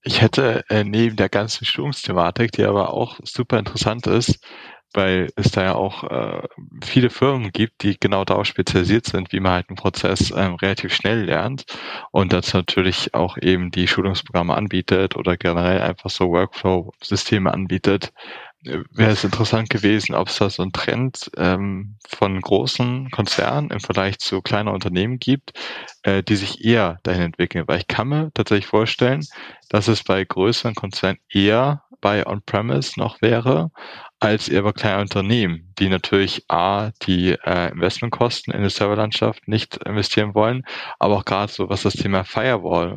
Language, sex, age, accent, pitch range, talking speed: German, male, 20-39, German, 95-115 Hz, 160 wpm